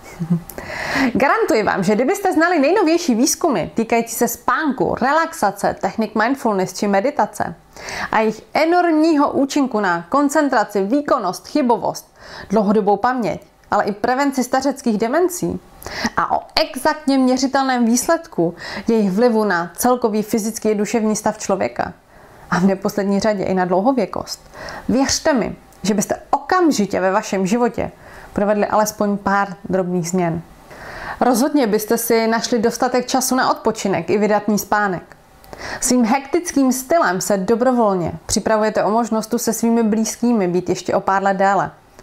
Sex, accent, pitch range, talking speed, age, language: female, native, 205-270 Hz, 130 wpm, 30-49, Czech